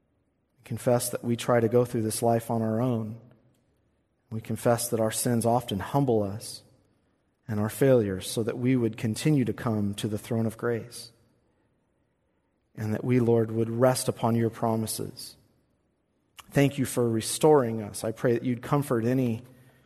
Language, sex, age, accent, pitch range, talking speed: English, male, 40-59, American, 105-125 Hz, 165 wpm